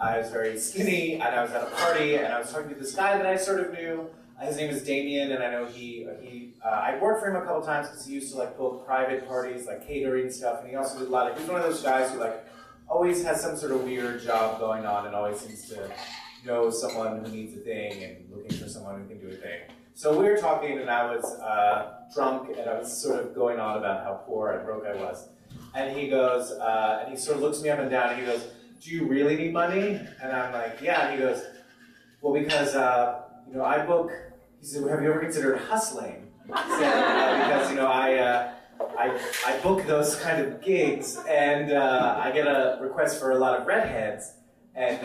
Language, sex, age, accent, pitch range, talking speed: English, male, 30-49, American, 120-150 Hz, 250 wpm